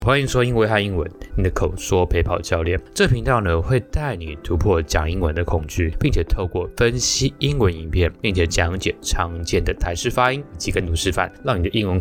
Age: 20-39